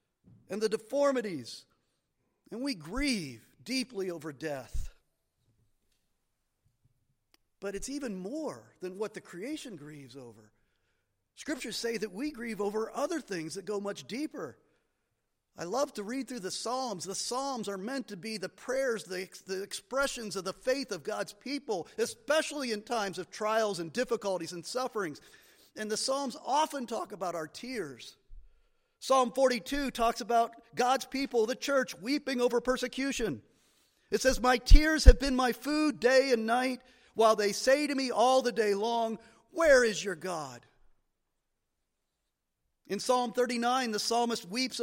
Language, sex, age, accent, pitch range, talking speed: English, male, 50-69, American, 200-265 Hz, 150 wpm